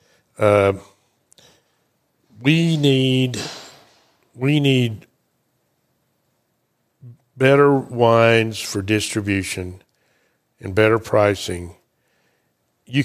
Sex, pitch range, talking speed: male, 100-130 Hz, 60 wpm